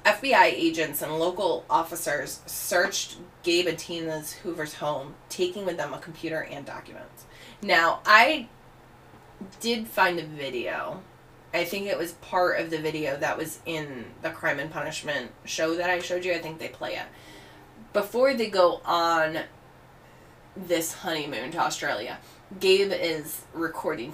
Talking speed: 150 wpm